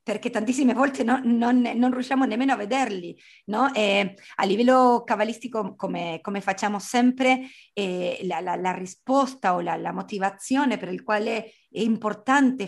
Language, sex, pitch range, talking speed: Italian, female, 210-265 Hz, 155 wpm